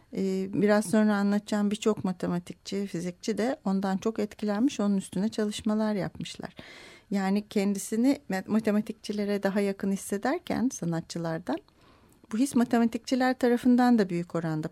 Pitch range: 190-230 Hz